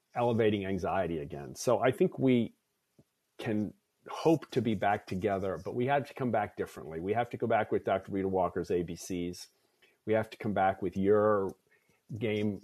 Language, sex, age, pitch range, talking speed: English, male, 40-59, 100-120 Hz, 180 wpm